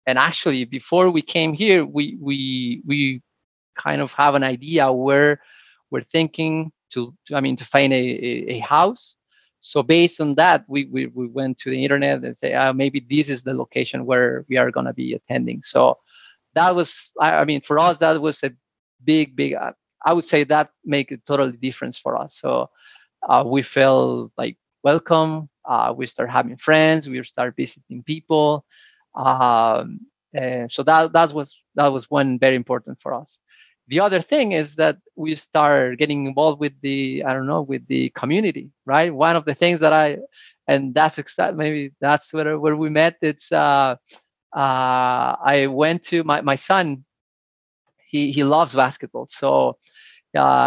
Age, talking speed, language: 30-49, 175 wpm, English